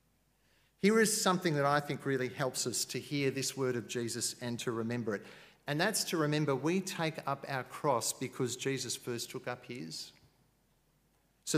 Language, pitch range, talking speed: English, 130-150 Hz, 180 wpm